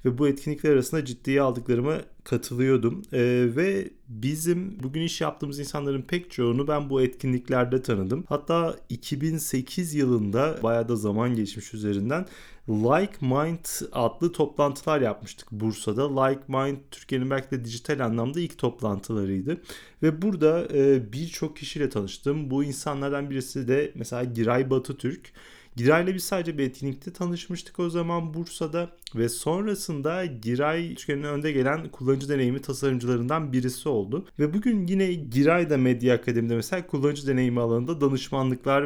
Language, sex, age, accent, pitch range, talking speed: Turkish, male, 30-49, native, 125-150 Hz, 135 wpm